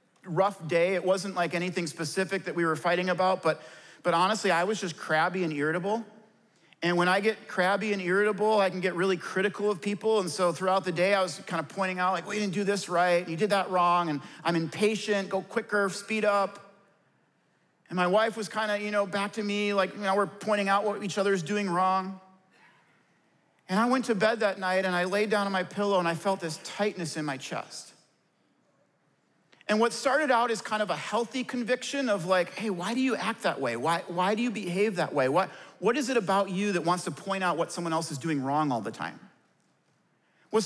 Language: English